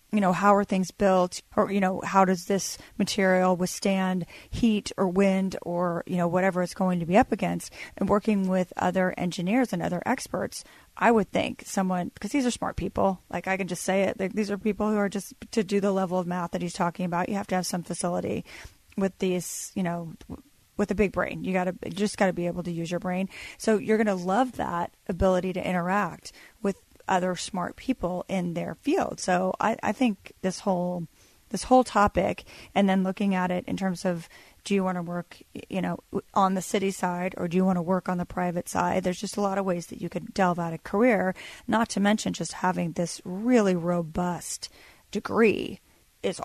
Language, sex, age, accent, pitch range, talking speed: English, female, 30-49, American, 180-205 Hz, 220 wpm